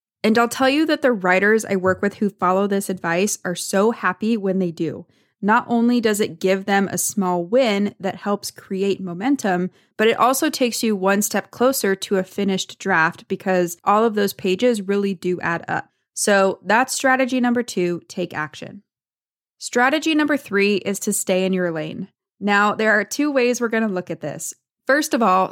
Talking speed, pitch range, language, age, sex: 200 wpm, 180-215 Hz, English, 20-39, female